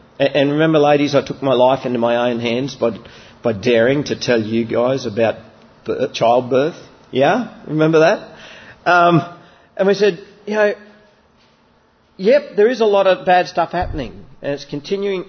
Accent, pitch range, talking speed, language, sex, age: Australian, 115-180 Hz, 165 wpm, English, male, 40-59